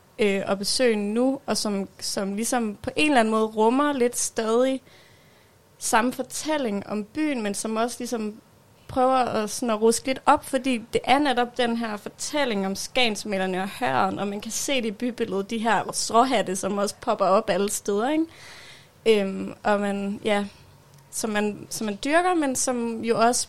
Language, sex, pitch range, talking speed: Danish, female, 200-240 Hz, 180 wpm